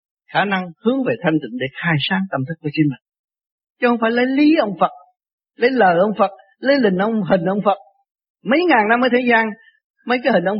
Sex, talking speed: male, 230 wpm